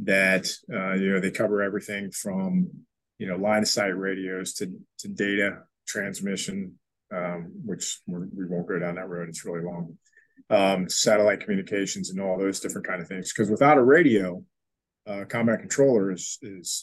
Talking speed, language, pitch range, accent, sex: 175 wpm, English, 95-110 Hz, American, male